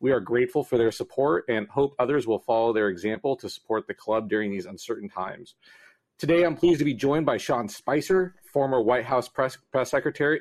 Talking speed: 210 wpm